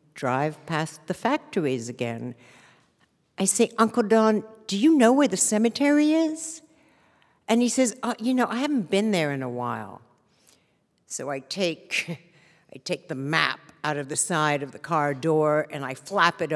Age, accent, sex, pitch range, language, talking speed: 60-79, American, female, 155-205 Hz, English, 170 wpm